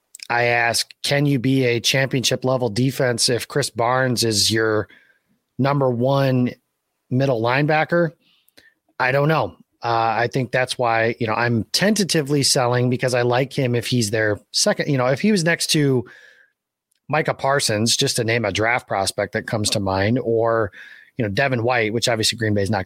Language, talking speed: English, 180 wpm